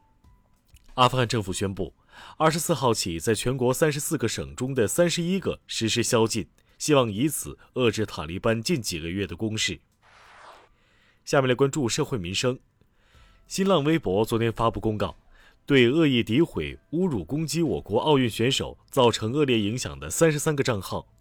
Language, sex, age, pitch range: Chinese, male, 30-49, 100-140 Hz